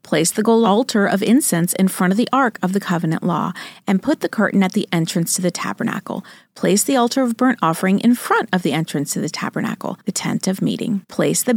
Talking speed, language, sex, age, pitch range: 235 wpm, English, female, 40-59, 185-240 Hz